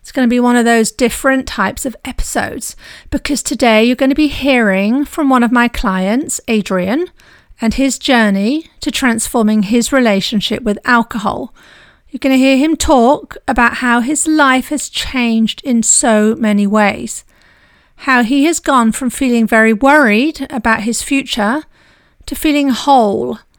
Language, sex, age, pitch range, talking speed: English, female, 40-59, 225-275 Hz, 160 wpm